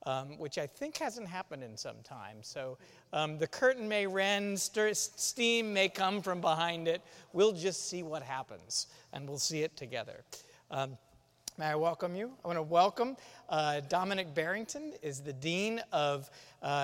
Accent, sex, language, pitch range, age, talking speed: American, male, English, 155-210 Hz, 40-59, 170 wpm